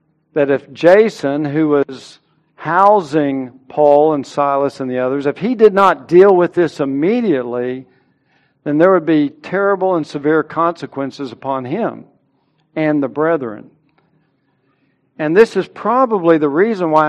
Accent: American